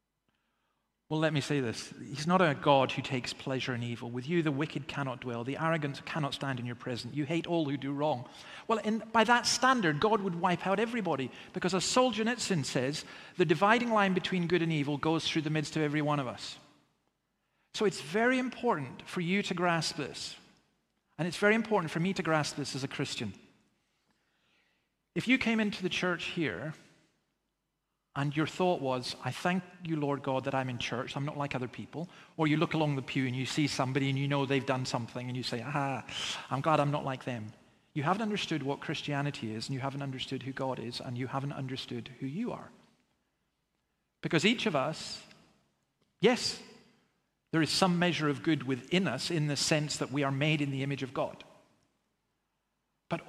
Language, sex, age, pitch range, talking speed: English, male, 40-59, 135-180 Hz, 205 wpm